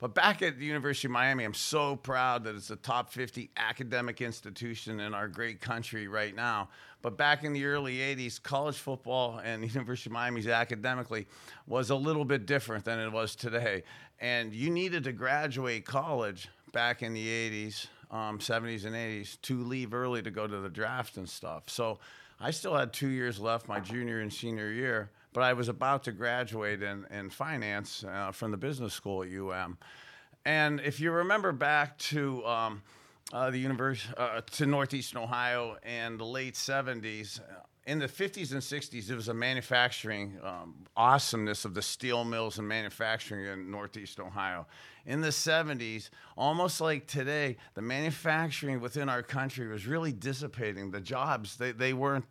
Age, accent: 50-69, American